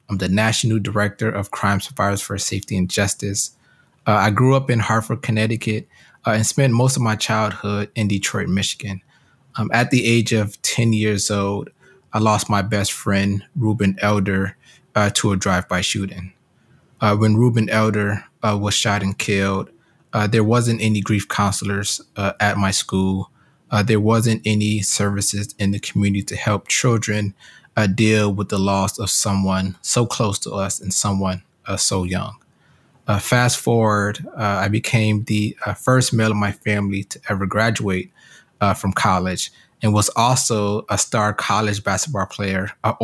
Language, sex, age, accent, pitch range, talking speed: English, male, 20-39, American, 100-115 Hz, 170 wpm